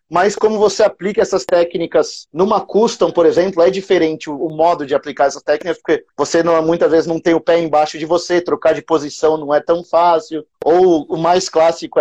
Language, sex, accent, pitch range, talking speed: Portuguese, male, Brazilian, 150-195 Hz, 205 wpm